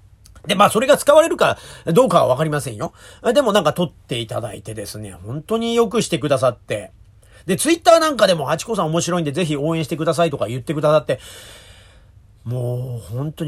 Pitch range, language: 130-215 Hz, Japanese